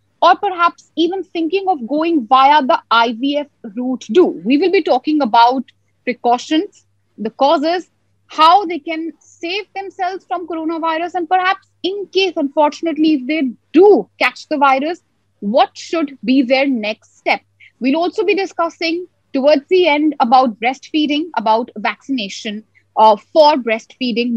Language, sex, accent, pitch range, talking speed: English, female, Indian, 250-325 Hz, 140 wpm